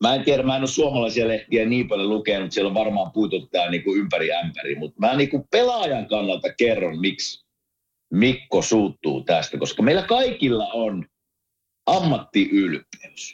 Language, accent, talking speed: Finnish, native, 155 wpm